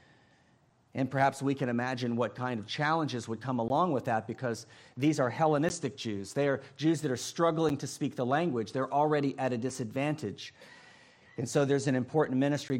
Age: 40-59